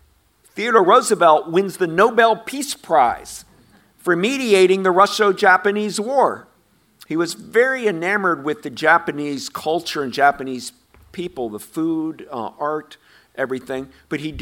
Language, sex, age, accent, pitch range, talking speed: English, male, 50-69, American, 140-195 Hz, 125 wpm